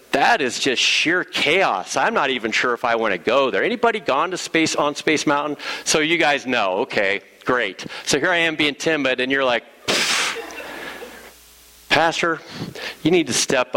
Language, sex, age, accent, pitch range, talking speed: English, male, 50-69, American, 95-140 Hz, 185 wpm